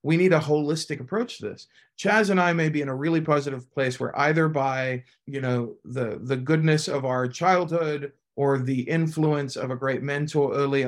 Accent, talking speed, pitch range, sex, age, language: American, 200 wpm, 125-150 Hz, male, 40-59, English